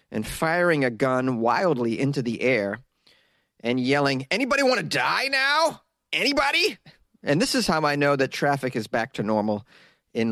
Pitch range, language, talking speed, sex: 120-165 Hz, English, 170 wpm, male